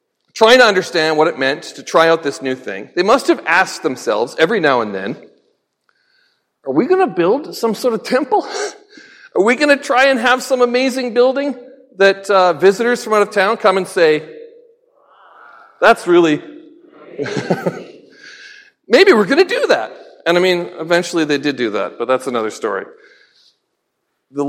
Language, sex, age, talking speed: English, male, 40-59, 175 wpm